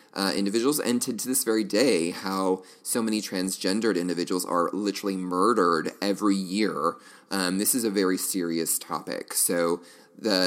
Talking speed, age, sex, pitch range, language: 155 wpm, 30-49, male, 90-110 Hz, English